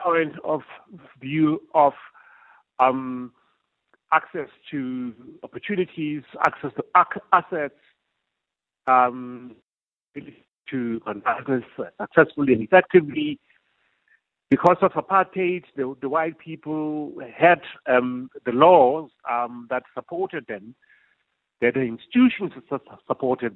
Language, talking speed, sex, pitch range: English, 95 wpm, male, 125-160 Hz